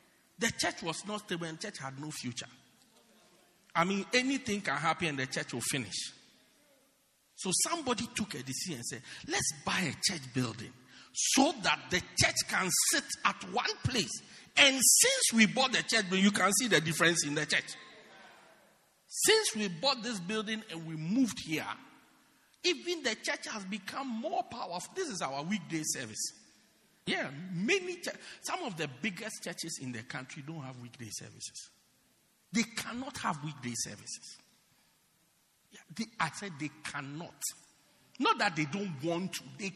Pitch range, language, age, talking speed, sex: 145-225 Hz, English, 50-69, 165 wpm, male